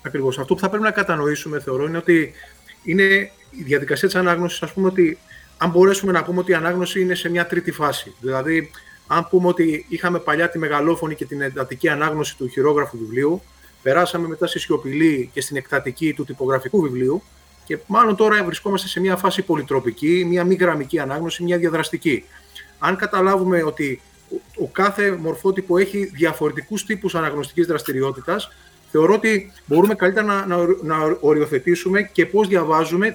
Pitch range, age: 150-185 Hz, 30-49